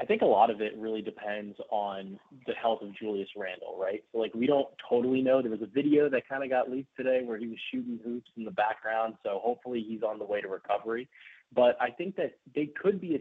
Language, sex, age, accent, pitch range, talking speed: English, male, 20-39, American, 105-135 Hz, 250 wpm